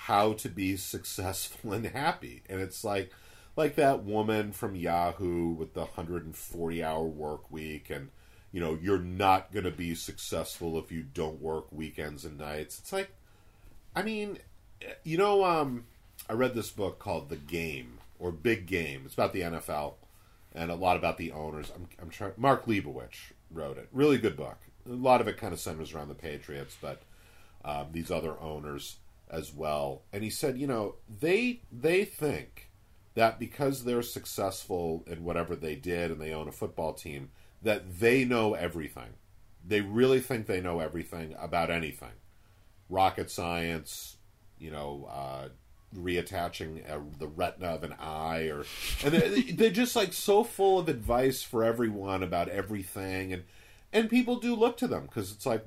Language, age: English, 40-59